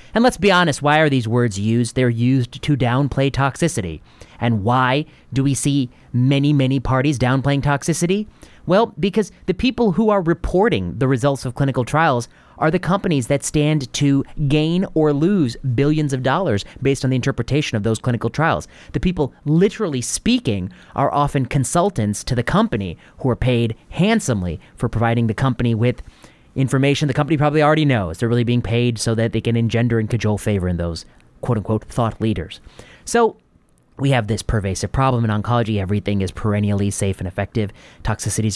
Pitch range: 110-140 Hz